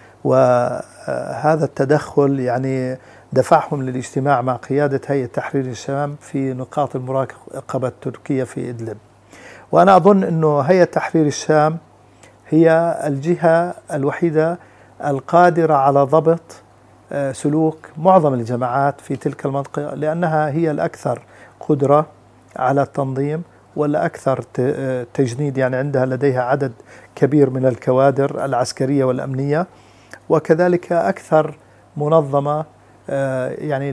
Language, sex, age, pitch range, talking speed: Arabic, male, 50-69, 130-155 Hz, 95 wpm